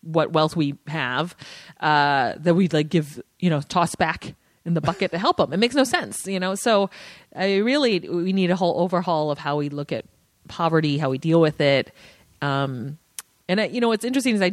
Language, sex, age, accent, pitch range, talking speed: English, female, 30-49, American, 145-185 Hz, 215 wpm